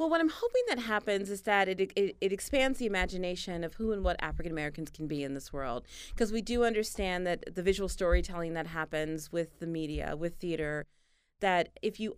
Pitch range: 170-195 Hz